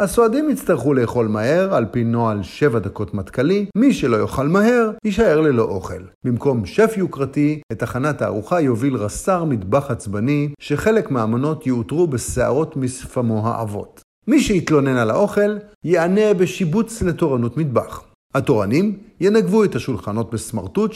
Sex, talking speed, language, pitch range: male, 130 wpm, Hebrew, 115-180 Hz